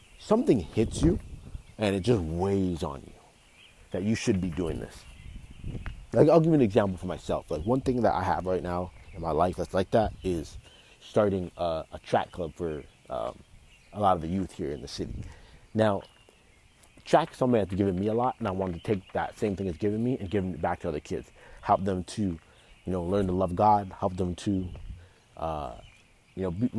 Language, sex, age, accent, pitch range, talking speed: English, male, 30-49, American, 90-110 Hz, 215 wpm